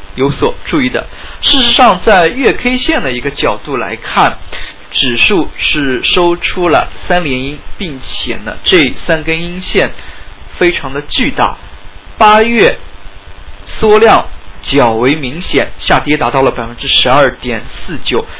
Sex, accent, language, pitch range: male, native, Chinese, 115-170 Hz